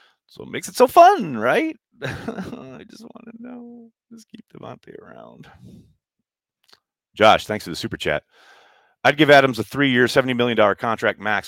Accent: American